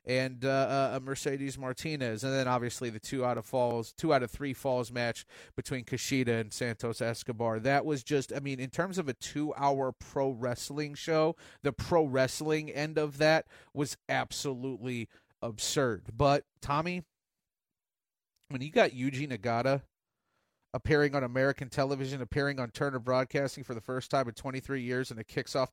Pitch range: 130-150 Hz